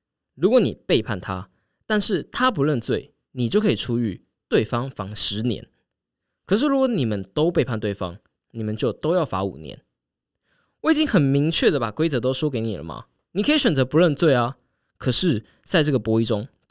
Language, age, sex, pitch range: Chinese, 20-39, male, 110-170 Hz